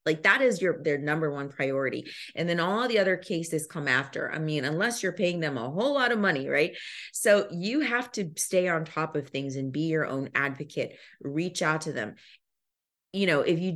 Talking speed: 220 wpm